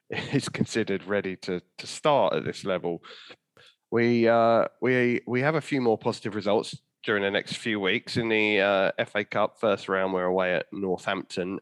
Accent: British